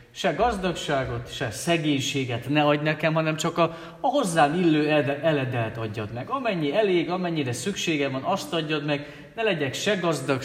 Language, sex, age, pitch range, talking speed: Hungarian, male, 40-59, 120-165 Hz, 165 wpm